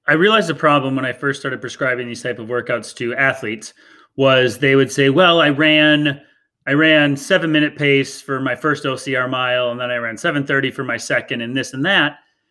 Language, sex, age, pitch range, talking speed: English, male, 30-49, 130-150 Hz, 210 wpm